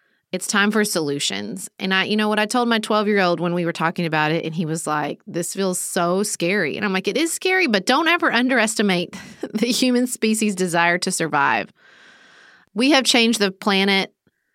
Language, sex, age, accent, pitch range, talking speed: English, female, 30-49, American, 170-210 Hz, 200 wpm